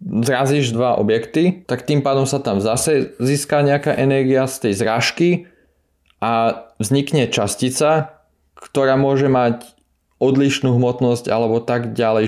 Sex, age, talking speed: male, 20-39, 125 wpm